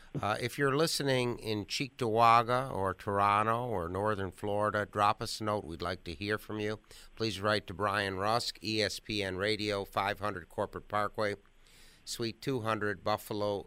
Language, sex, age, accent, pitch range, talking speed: English, male, 50-69, American, 95-110 Hz, 150 wpm